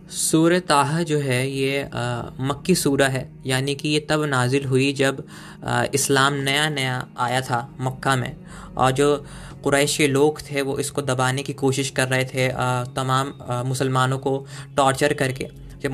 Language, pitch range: Hindi, 130-150 Hz